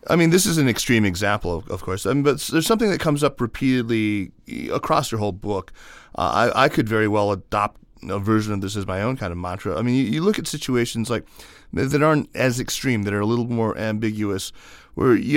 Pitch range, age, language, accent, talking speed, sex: 95-125 Hz, 30-49, English, American, 235 wpm, male